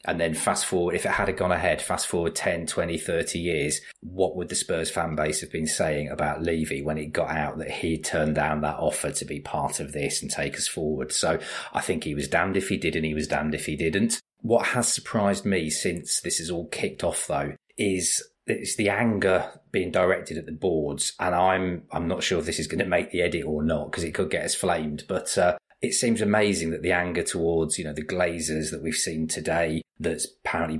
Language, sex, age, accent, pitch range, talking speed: English, male, 30-49, British, 80-115 Hz, 235 wpm